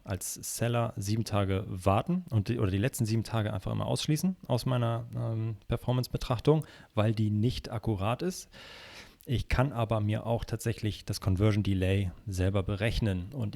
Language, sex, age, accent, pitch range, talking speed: German, male, 30-49, German, 95-120 Hz, 155 wpm